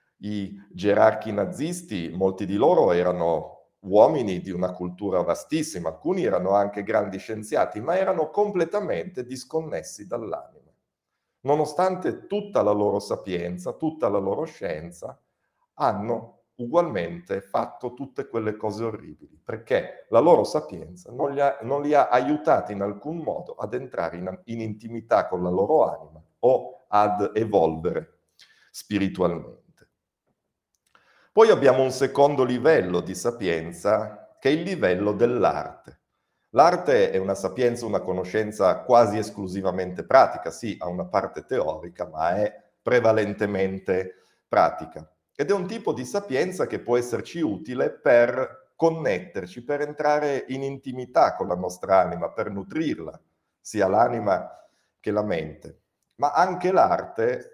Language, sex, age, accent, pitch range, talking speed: Italian, male, 50-69, native, 95-145 Hz, 130 wpm